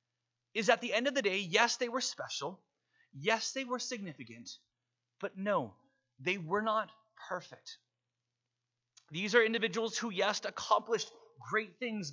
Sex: male